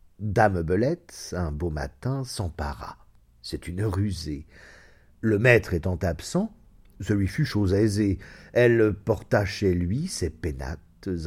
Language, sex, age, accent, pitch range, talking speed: French, male, 50-69, French, 90-130 Hz, 130 wpm